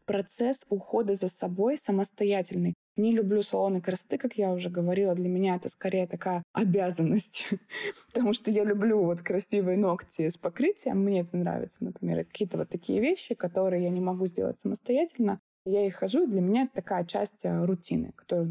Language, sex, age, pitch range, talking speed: Russian, female, 20-39, 175-210 Hz, 170 wpm